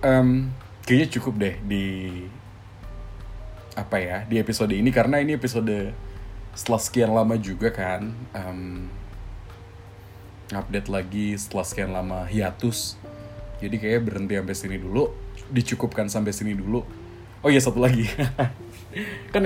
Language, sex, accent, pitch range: Indonesian, male, native, 100-115 Hz